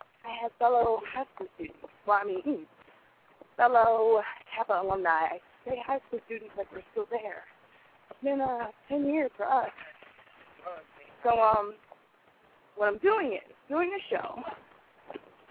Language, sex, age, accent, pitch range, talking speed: English, female, 20-39, American, 220-335 Hz, 145 wpm